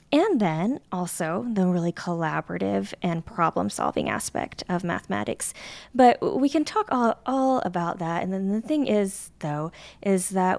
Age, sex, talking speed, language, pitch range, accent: 20-39, female, 155 wpm, English, 170-200 Hz, American